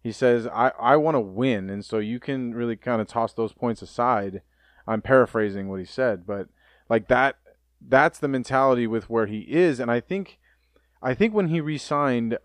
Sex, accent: male, American